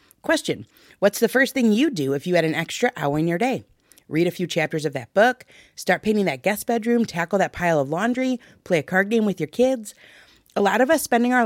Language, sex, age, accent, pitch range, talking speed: English, female, 30-49, American, 150-235 Hz, 240 wpm